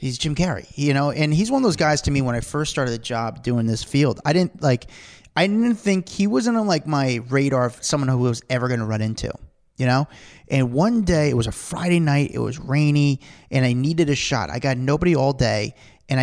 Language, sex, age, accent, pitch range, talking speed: English, male, 30-49, American, 120-150 Hz, 250 wpm